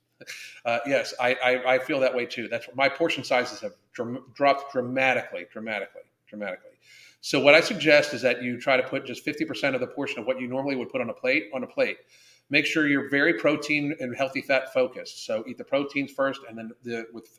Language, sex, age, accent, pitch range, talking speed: English, male, 40-59, American, 125-155 Hz, 225 wpm